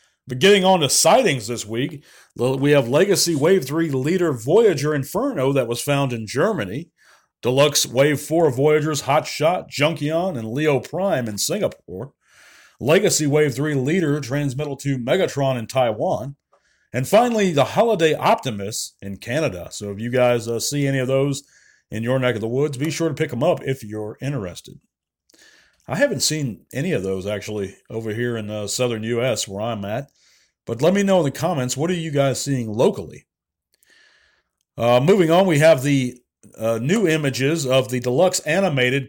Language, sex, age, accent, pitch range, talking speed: English, male, 40-59, American, 115-150 Hz, 175 wpm